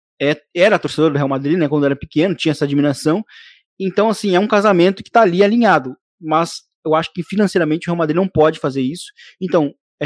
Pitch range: 145-190 Hz